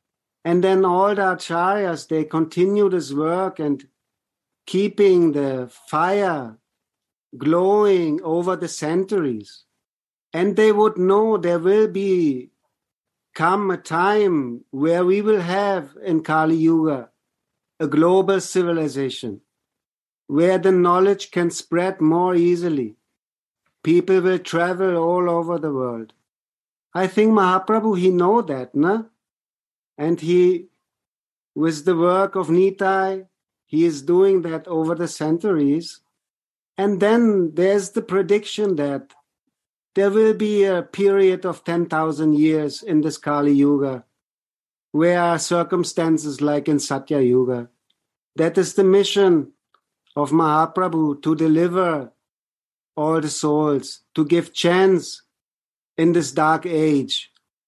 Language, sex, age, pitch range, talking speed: English, male, 50-69, 155-190 Hz, 120 wpm